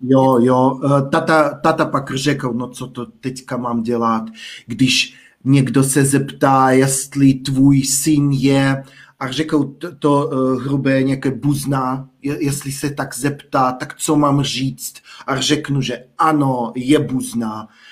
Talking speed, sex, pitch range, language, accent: 140 wpm, male, 135-155 Hz, Czech, native